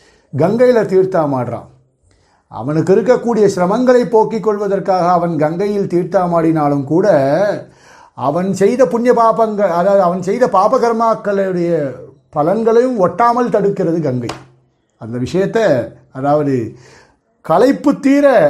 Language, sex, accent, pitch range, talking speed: Tamil, male, native, 145-225 Hz, 95 wpm